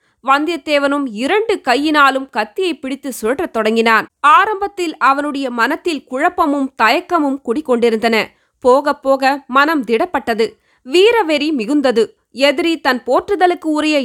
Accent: native